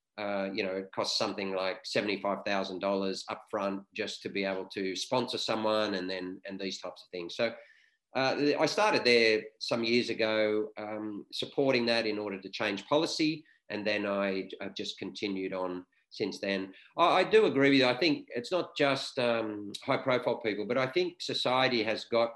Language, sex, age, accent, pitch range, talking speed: English, male, 40-59, Australian, 110-140 Hz, 190 wpm